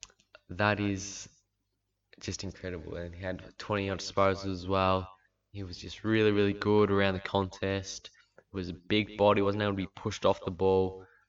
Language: English